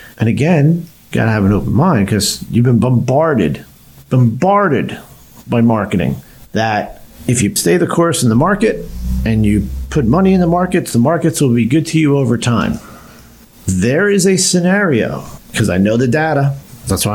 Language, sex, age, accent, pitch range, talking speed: English, male, 50-69, American, 110-150 Hz, 175 wpm